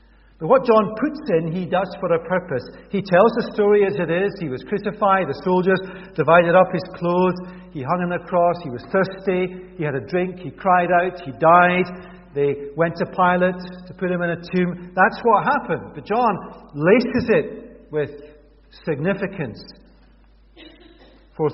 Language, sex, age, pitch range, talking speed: English, male, 50-69, 145-195 Hz, 175 wpm